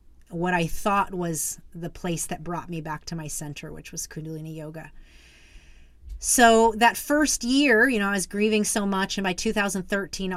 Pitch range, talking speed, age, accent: 160-205 Hz, 180 wpm, 30-49, American